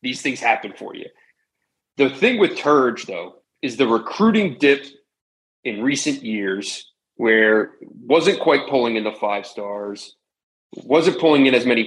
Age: 30-49